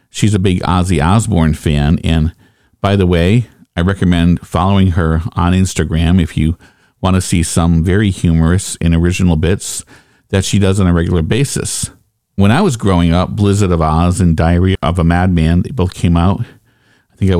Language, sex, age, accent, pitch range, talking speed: English, male, 50-69, American, 85-105 Hz, 185 wpm